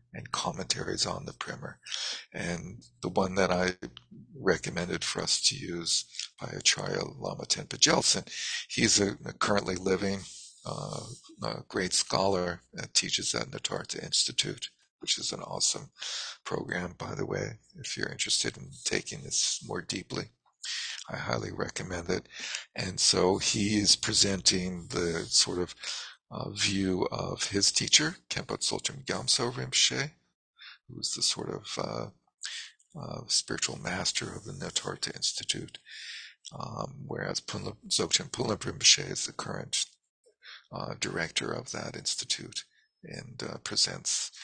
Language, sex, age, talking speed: English, male, 50-69, 140 wpm